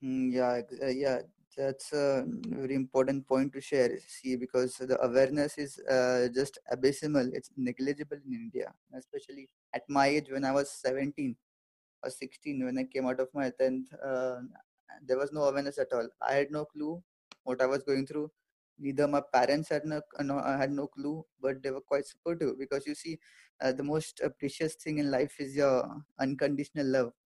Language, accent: English, Indian